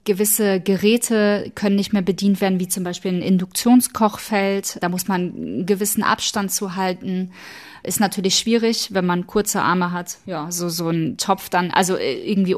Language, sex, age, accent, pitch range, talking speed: German, female, 20-39, German, 185-210 Hz, 170 wpm